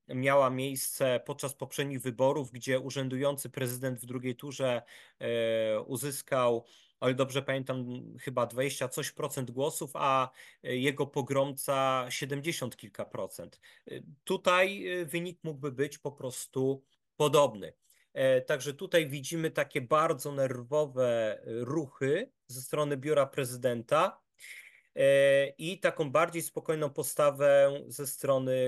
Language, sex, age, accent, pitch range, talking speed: Polish, male, 30-49, native, 130-145 Hz, 105 wpm